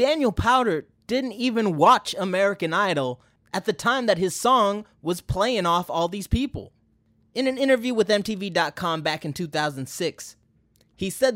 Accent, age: American, 20-39